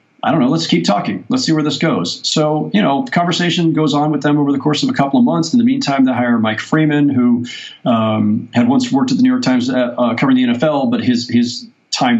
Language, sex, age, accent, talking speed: English, male, 40-59, American, 260 wpm